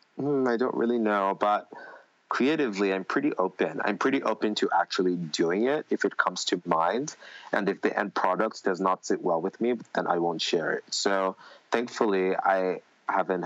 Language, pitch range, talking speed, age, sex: English, 85-100 Hz, 185 wpm, 30-49, male